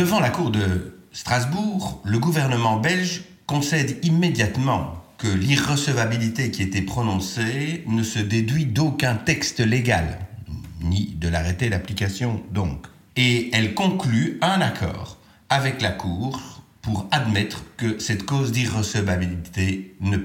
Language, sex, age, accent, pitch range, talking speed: French, male, 50-69, French, 95-145 Hz, 120 wpm